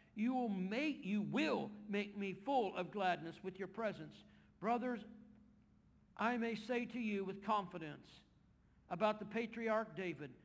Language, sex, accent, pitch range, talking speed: English, male, American, 175-220 Hz, 145 wpm